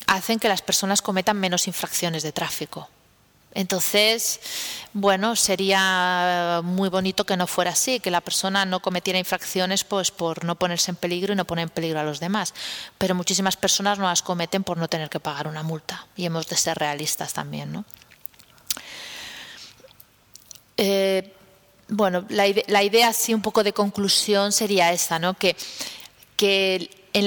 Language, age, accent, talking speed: Spanish, 30-49, Spanish, 160 wpm